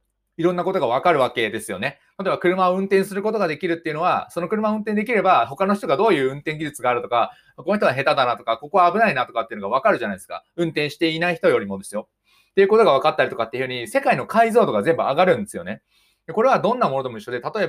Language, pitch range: Japanese, 135-200 Hz